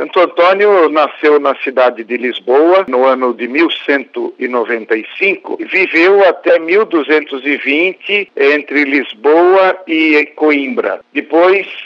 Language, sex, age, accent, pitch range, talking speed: Portuguese, male, 60-79, Brazilian, 145-205 Hz, 95 wpm